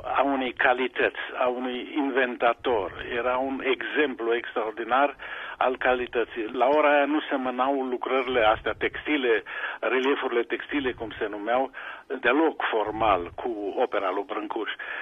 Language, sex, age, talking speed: Romanian, male, 50-69, 125 wpm